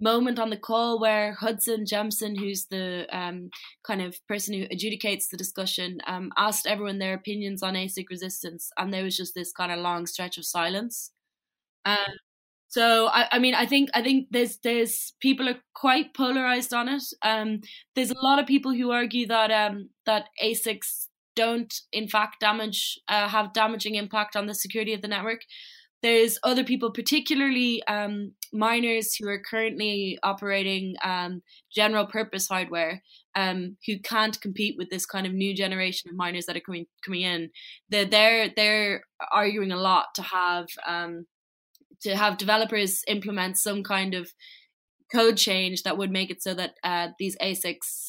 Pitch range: 185-225 Hz